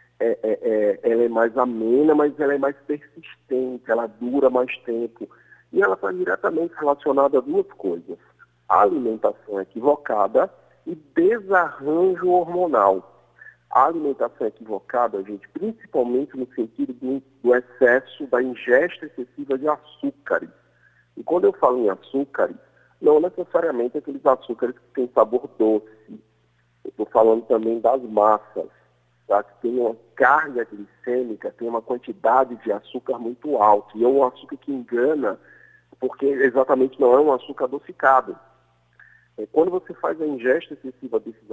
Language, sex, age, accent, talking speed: Portuguese, male, 50-69, Brazilian, 130 wpm